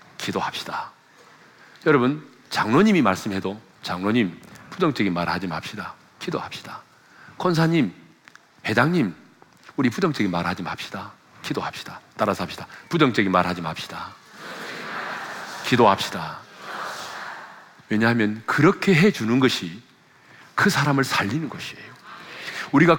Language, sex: Korean, male